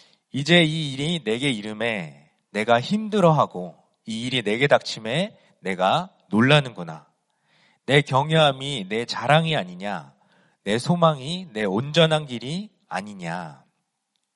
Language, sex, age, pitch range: Korean, male, 40-59, 130-175 Hz